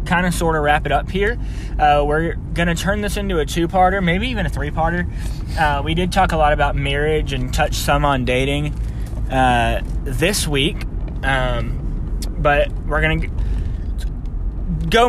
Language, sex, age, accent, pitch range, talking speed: English, male, 20-39, American, 100-145 Hz, 165 wpm